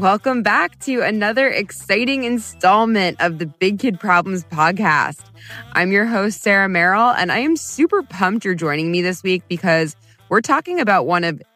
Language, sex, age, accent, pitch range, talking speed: English, female, 20-39, American, 155-205 Hz, 170 wpm